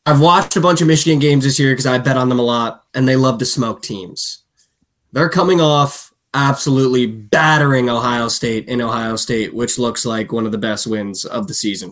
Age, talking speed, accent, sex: 20-39, 215 wpm, American, male